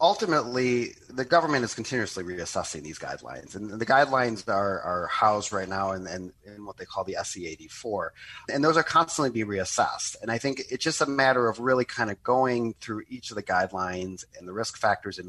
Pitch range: 100-125 Hz